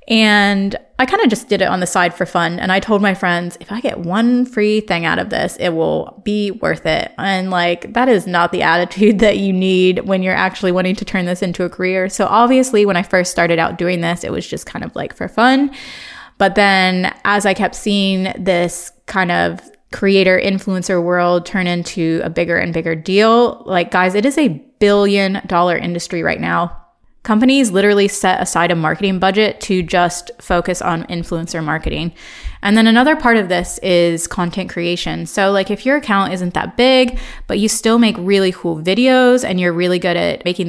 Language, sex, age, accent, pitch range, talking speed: English, female, 20-39, American, 180-215 Hz, 205 wpm